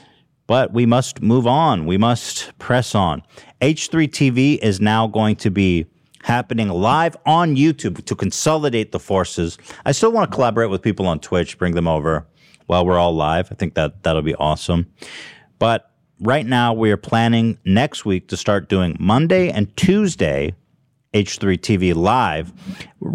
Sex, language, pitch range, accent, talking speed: male, English, 90-120 Hz, American, 160 wpm